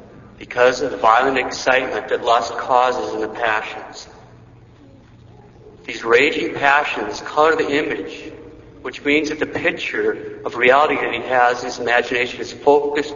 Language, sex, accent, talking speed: English, male, American, 145 wpm